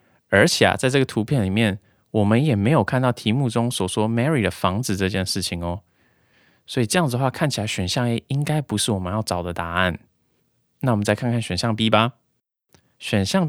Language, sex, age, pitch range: Chinese, male, 20-39, 100-125 Hz